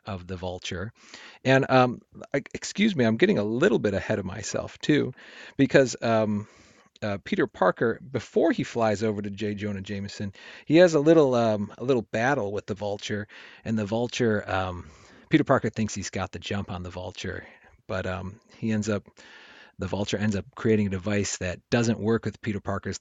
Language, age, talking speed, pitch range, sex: English, 40-59, 190 wpm, 100-120 Hz, male